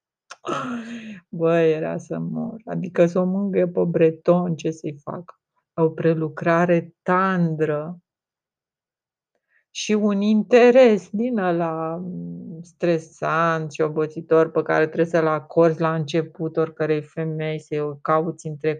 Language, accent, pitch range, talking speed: Romanian, native, 155-180 Hz, 120 wpm